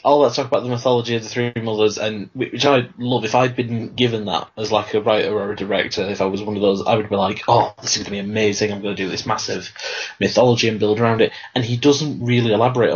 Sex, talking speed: male, 265 wpm